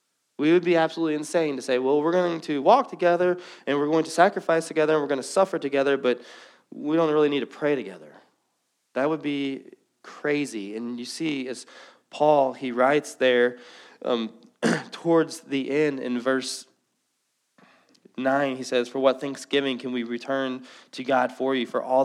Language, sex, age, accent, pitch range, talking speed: English, male, 20-39, American, 125-160 Hz, 180 wpm